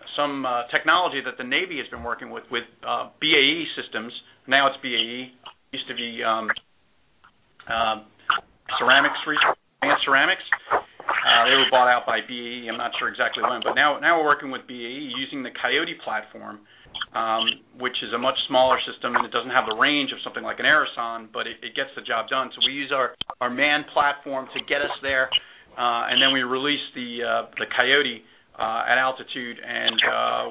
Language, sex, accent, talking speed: English, male, American, 195 wpm